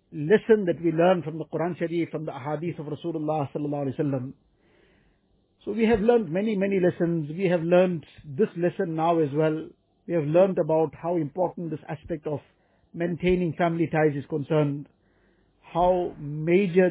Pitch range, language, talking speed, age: 155-180 Hz, English, 165 wpm, 50-69